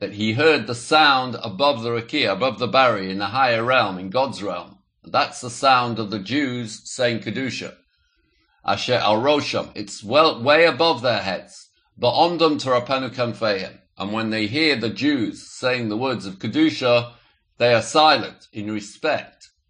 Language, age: English, 50-69